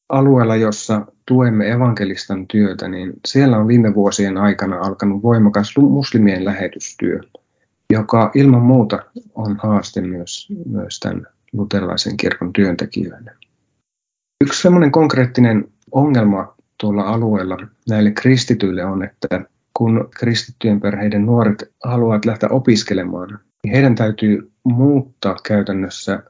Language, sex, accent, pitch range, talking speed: Finnish, male, native, 100-120 Hz, 110 wpm